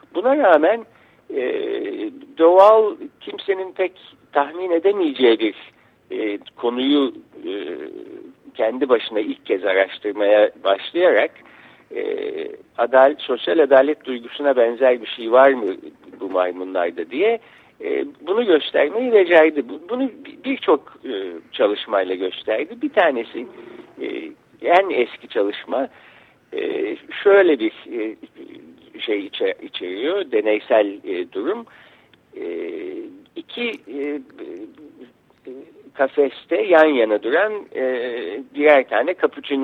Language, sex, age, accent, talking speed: Turkish, male, 60-79, native, 90 wpm